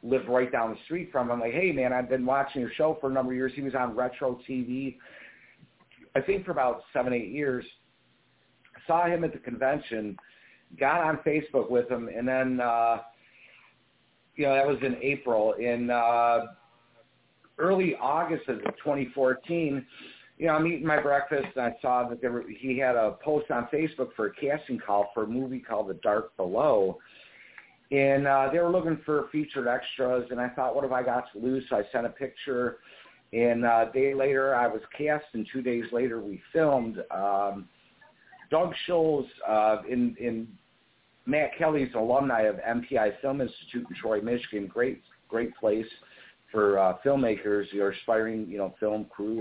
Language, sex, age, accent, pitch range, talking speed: English, male, 50-69, American, 115-140 Hz, 185 wpm